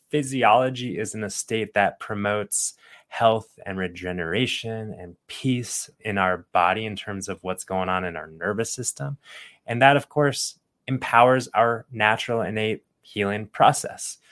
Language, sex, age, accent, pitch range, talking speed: English, male, 20-39, American, 100-120 Hz, 145 wpm